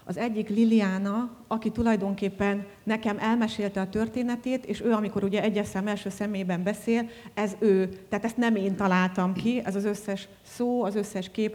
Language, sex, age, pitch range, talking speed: Hungarian, female, 30-49, 185-210 Hz, 165 wpm